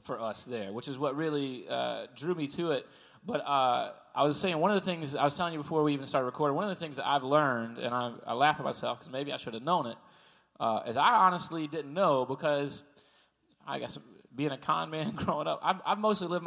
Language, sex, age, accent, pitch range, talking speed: English, male, 20-39, American, 120-155 Hz, 250 wpm